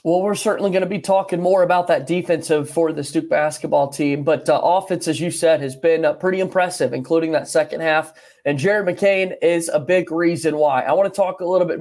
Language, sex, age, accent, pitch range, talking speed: English, male, 30-49, American, 165-230 Hz, 235 wpm